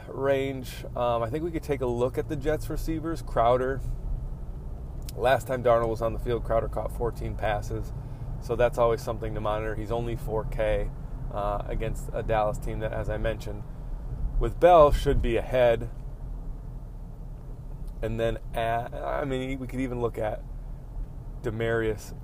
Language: English